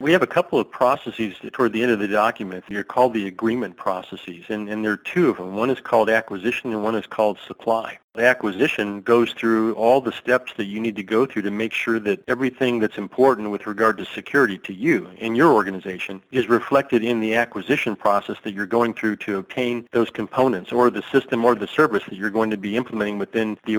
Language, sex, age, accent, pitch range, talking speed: English, male, 40-59, American, 105-120 Hz, 225 wpm